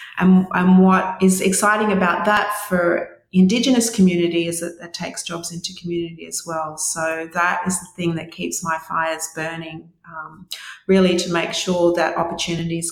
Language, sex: English, female